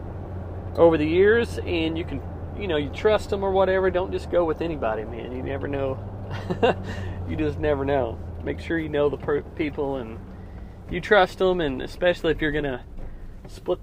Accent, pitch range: American, 95-150 Hz